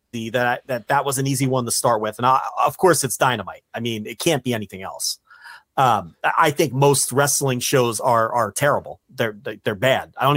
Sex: male